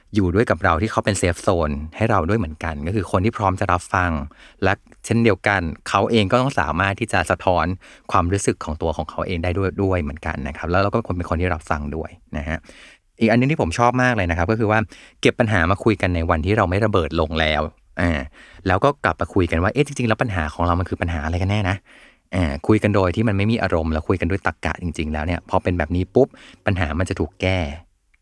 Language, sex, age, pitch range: Thai, male, 20-39, 85-105 Hz